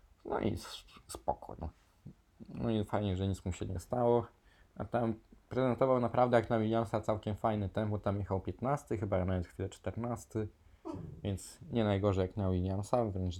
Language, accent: Polish, native